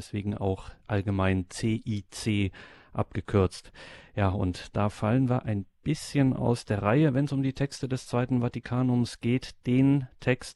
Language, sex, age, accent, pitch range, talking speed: German, male, 40-59, German, 100-120 Hz, 150 wpm